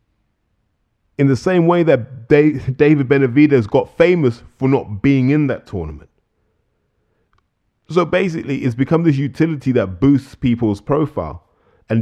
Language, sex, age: English, male, 20-39